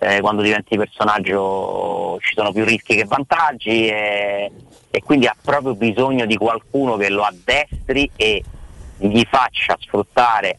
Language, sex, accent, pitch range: Italian, male, native, 100-120 Hz